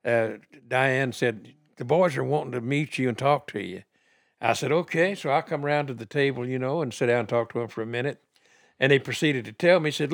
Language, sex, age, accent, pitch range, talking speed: English, male, 60-79, American, 115-145 Hz, 255 wpm